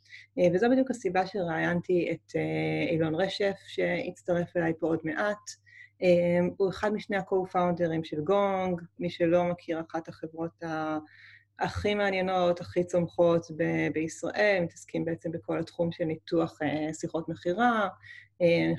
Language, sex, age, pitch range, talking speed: Hebrew, female, 30-49, 160-180 Hz, 120 wpm